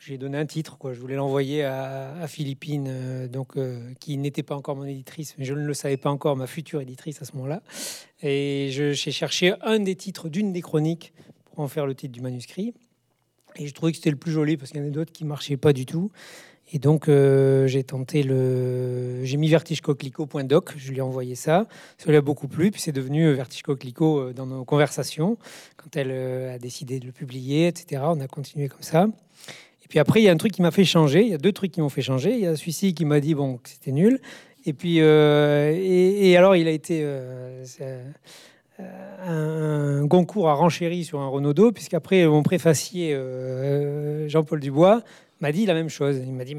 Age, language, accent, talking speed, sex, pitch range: 40-59, French, French, 225 wpm, male, 135-165 Hz